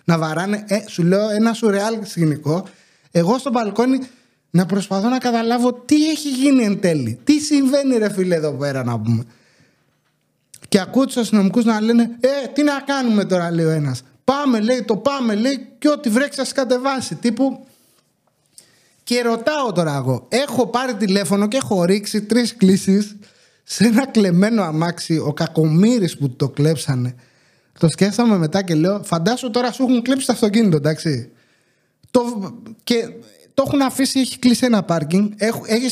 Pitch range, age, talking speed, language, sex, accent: 175-245 Hz, 30-49, 160 wpm, English, male, Greek